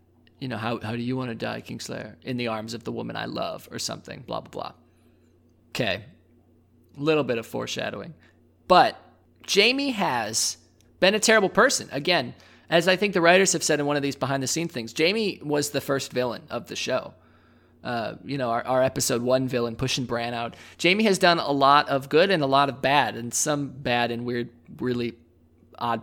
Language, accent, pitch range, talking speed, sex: English, American, 115-160 Hz, 205 wpm, male